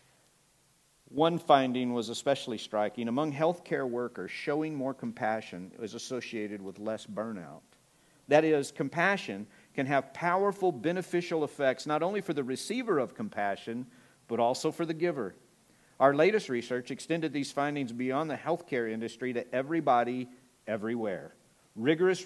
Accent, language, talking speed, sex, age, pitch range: American, English, 135 wpm, male, 50-69, 125-170 Hz